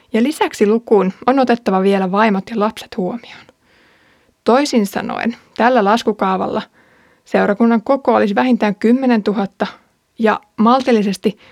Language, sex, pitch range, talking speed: Finnish, female, 195-240 Hz, 115 wpm